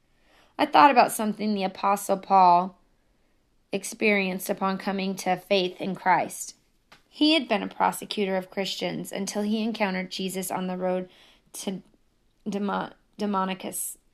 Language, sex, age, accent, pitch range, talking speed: English, female, 20-39, American, 185-210 Hz, 125 wpm